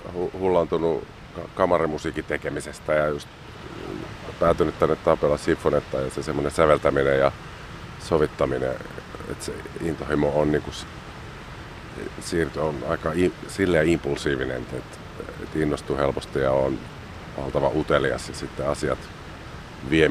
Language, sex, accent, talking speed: Finnish, male, native, 105 wpm